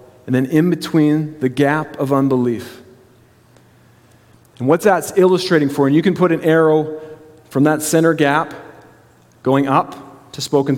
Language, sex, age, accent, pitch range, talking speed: English, male, 40-59, American, 120-155 Hz, 150 wpm